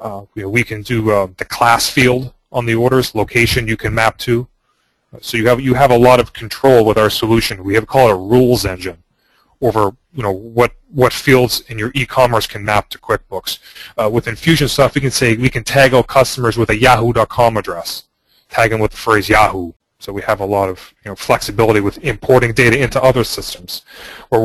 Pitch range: 110-130 Hz